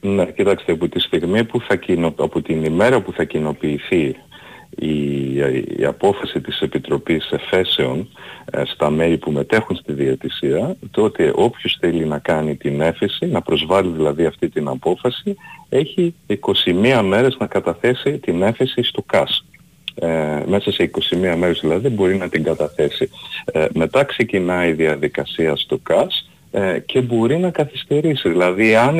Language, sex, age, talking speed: Greek, male, 40-59, 155 wpm